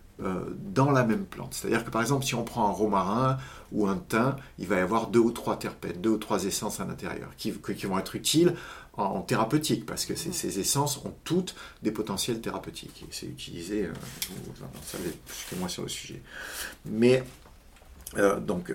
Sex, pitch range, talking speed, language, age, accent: male, 100-135 Hz, 200 wpm, French, 50-69, French